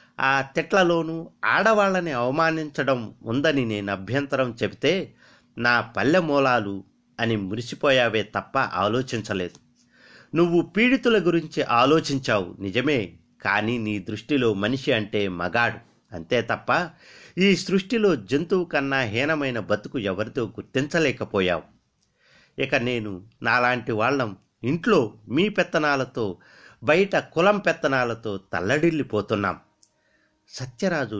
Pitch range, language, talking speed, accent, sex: 110-160 Hz, Telugu, 90 wpm, native, male